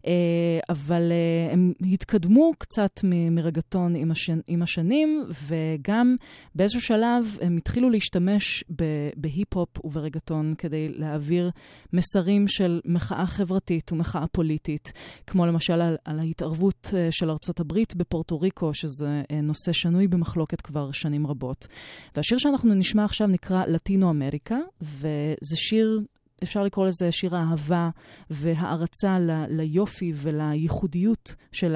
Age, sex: 20-39, female